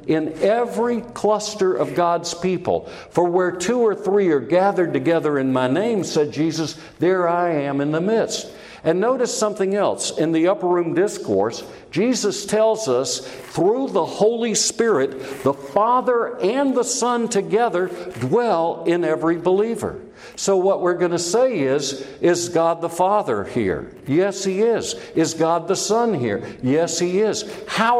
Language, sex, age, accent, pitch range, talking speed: English, male, 60-79, American, 165-210 Hz, 160 wpm